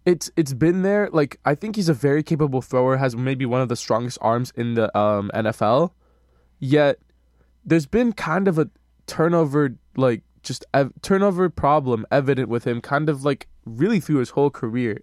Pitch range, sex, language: 120-150 Hz, male, English